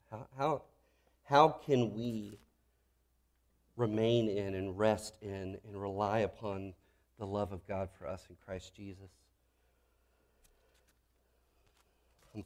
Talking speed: 105 wpm